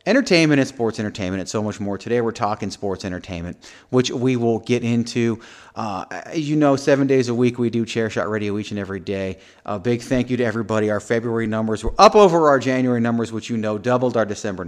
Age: 30-49